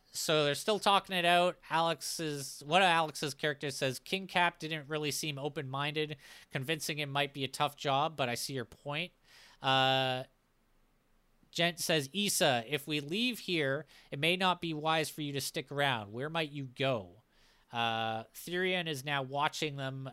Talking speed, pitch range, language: 175 wpm, 130-155 Hz, English